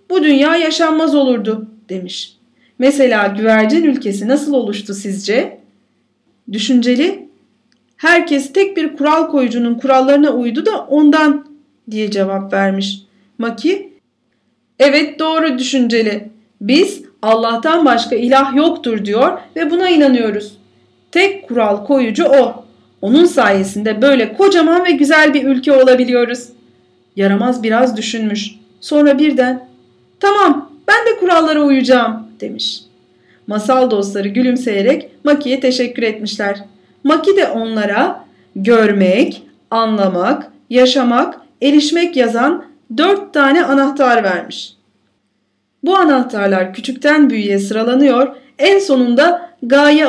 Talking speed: 105 wpm